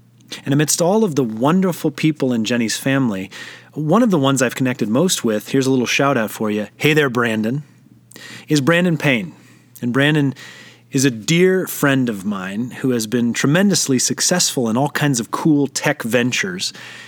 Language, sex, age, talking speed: English, male, 30-49, 180 wpm